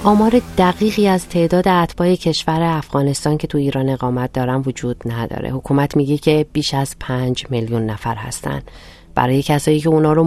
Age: 40-59